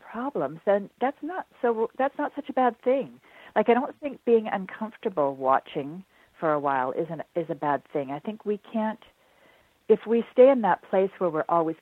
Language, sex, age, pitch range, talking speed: English, female, 50-69, 150-210 Hz, 200 wpm